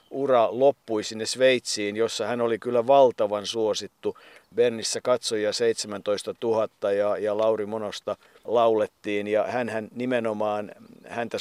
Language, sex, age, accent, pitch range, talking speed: Finnish, male, 50-69, native, 105-140 Hz, 120 wpm